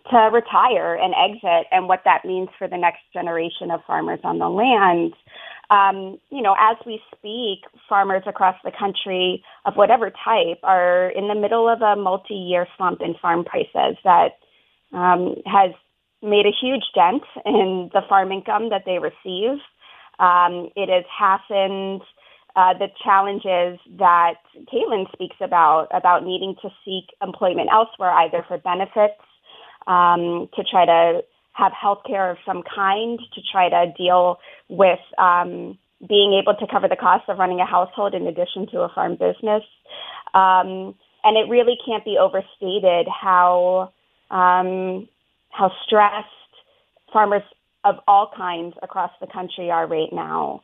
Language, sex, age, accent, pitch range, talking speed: English, female, 20-39, American, 180-205 Hz, 150 wpm